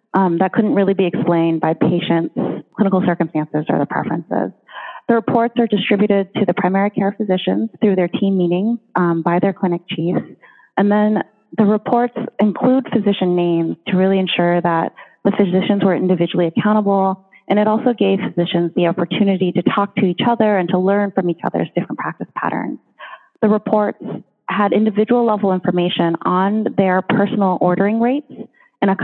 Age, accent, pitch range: 30-49, American, 170-210 Hz